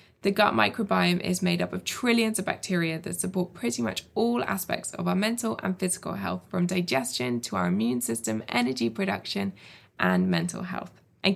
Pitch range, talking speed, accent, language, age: 165-195 Hz, 180 wpm, British, English, 20-39